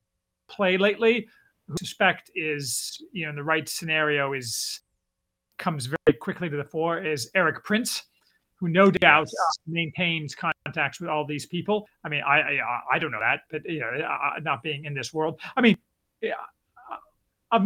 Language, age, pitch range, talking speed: English, 40-59, 140-180 Hz, 175 wpm